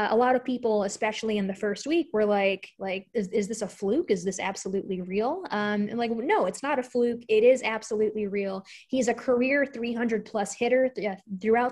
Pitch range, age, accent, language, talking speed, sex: 195-230 Hz, 20-39, American, English, 215 wpm, female